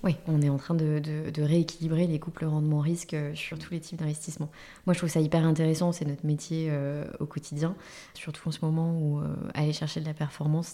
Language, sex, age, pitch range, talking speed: French, female, 20-39, 150-170 Hz, 225 wpm